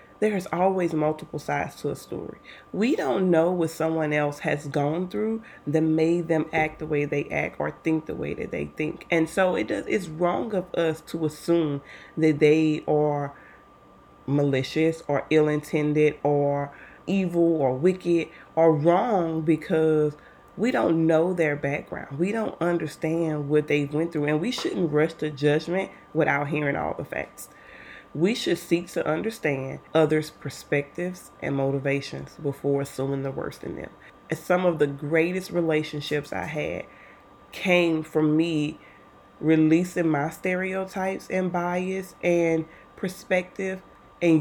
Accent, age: American, 30-49